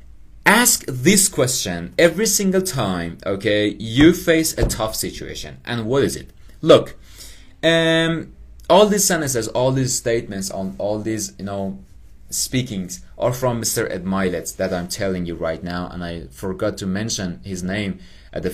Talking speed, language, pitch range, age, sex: 160 wpm, English, 90-130 Hz, 30-49, male